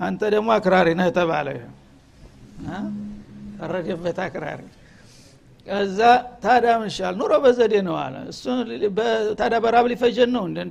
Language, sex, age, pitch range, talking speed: Amharic, male, 60-79, 185-225 Hz, 55 wpm